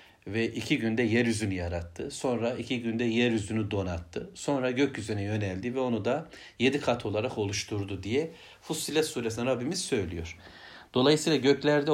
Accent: native